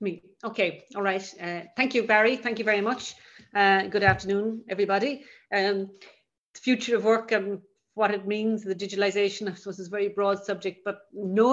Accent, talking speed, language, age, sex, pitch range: Irish, 195 wpm, English, 40-59, female, 180-200 Hz